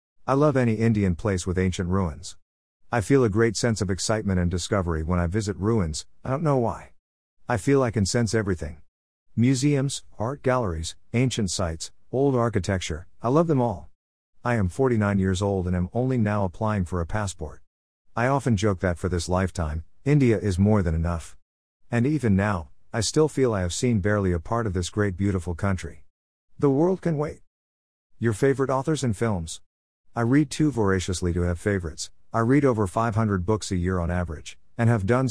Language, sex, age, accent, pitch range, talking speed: English, male, 50-69, American, 85-115 Hz, 190 wpm